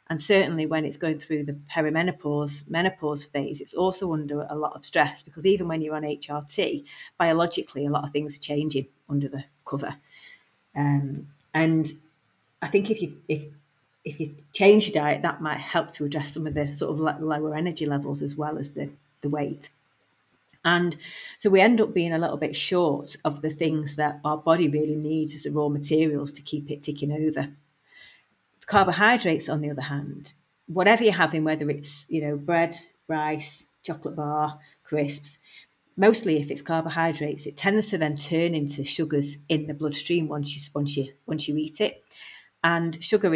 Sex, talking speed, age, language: female, 180 wpm, 40-59, English